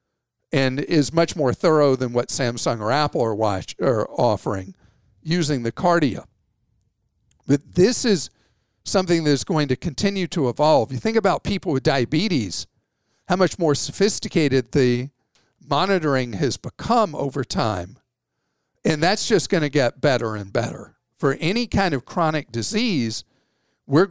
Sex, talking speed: male, 145 wpm